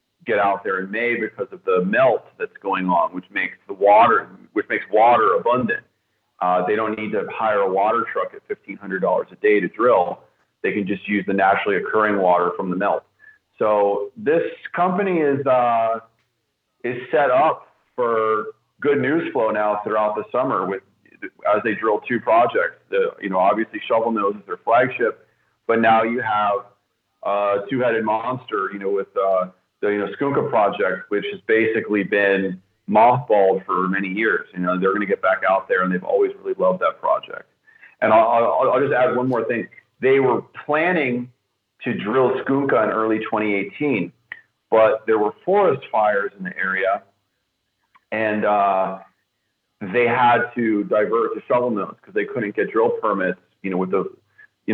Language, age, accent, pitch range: English, 40-59, American, 100-145 Hz